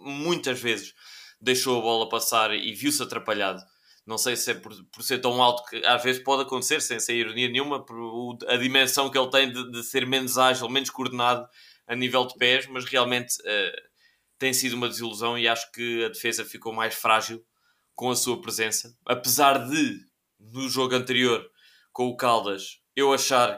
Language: Portuguese